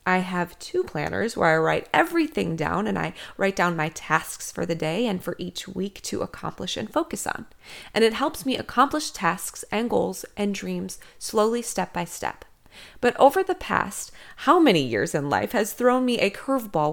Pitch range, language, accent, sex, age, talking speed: 185-255 Hz, English, American, female, 20-39, 195 wpm